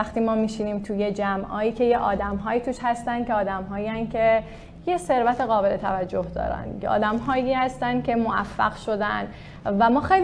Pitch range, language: 195-235 Hz, Persian